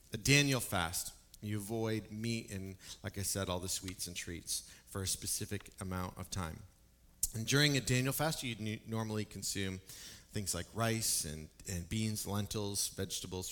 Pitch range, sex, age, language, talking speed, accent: 95-120 Hz, male, 30-49, English, 165 wpm, American